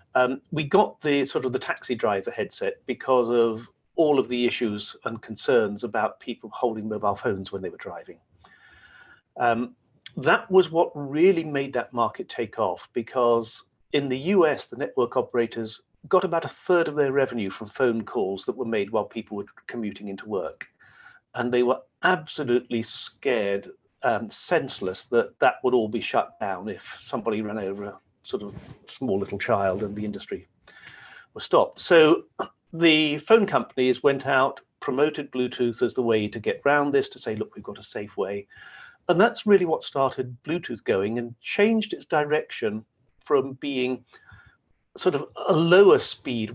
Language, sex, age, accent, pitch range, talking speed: English, male, 50-69, British, 115-150 Hz, 170 wpm